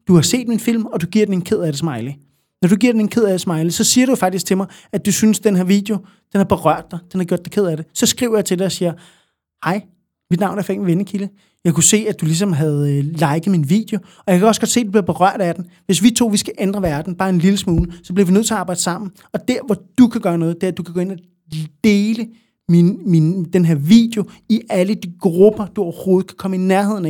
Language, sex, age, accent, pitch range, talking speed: Danish, male, 30-49, native, 180-220 Hz, 290 wpm